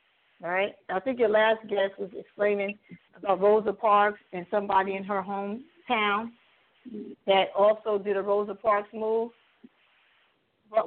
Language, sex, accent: English, female, American